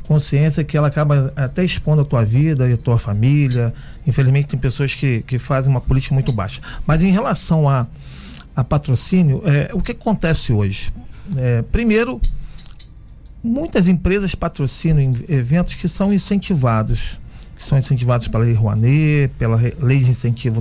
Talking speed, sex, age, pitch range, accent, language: 155 wpm, male, 40-59, 130-180 Hz, Brazilian, Portuguese